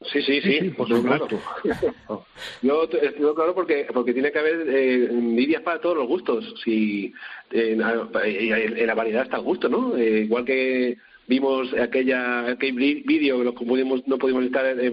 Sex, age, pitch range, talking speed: male, 40-59, 120-155 Hz, 175 wpm